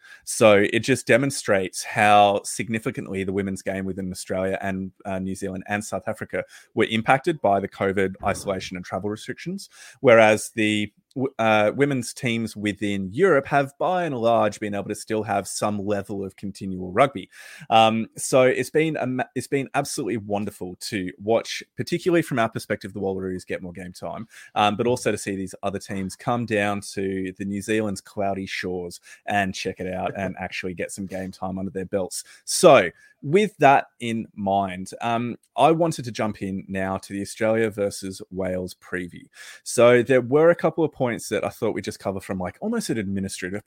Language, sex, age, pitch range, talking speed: English, male, 20-39, 95-120 Hz, 185 wpm